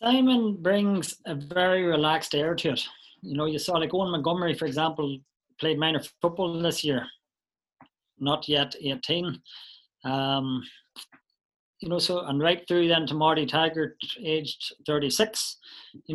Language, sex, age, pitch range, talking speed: English, male, 30-49, 150-185 Hz, 145 wpm